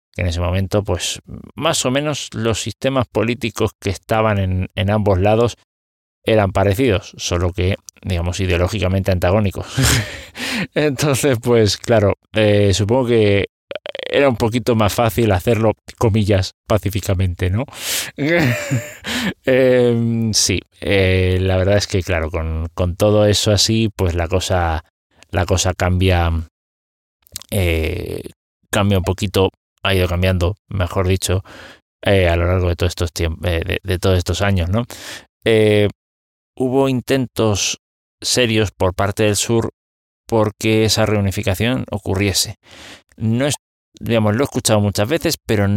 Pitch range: 90-115 Hz